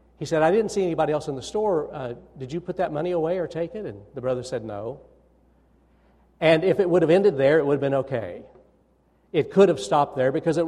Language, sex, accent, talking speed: English, male, American, 245 wpm